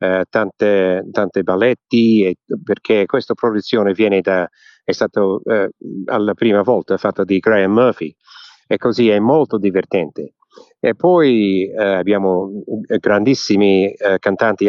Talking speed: 135 wpm